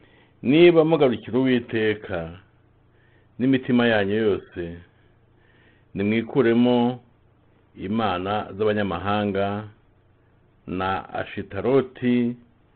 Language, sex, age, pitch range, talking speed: English, male, 50-69, 105-125 Hz, 55 wpm